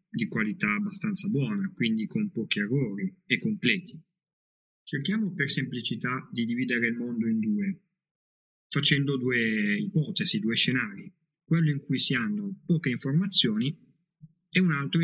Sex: male